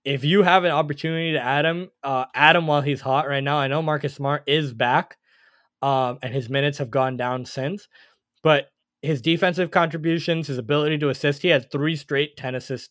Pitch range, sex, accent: 130-150 Hz, male, American